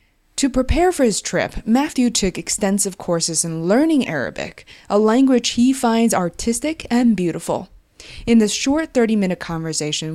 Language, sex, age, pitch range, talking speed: English, female, 20-39, 175-235 Hz, 140 wpm